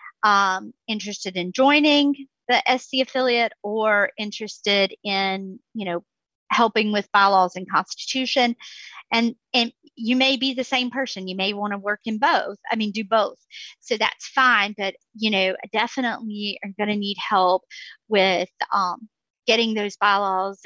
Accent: American